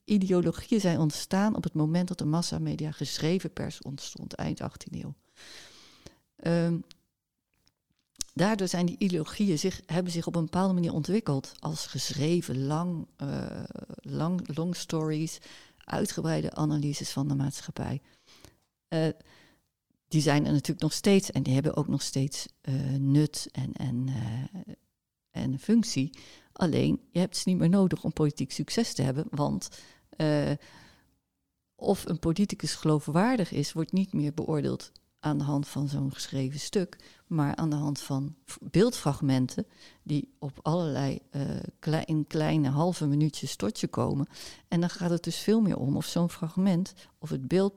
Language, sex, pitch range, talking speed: Dutch, female, 140-175 Hz, 145 wpm